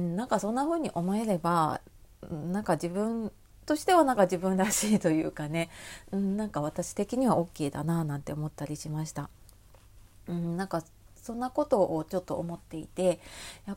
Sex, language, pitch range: female, Japanese, 160-210 Hz